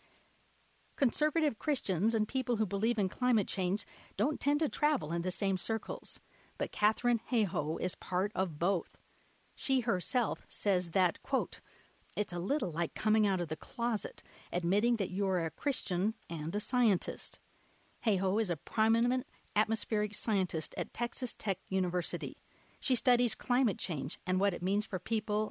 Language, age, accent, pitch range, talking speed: English, 50-69, American, 185-230 Hz, 160 wpm